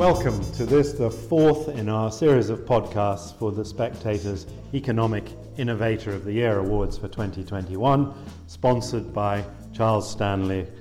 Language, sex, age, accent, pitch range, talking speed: English, male, 40-59, British, 100-120 Hz, 140 wpm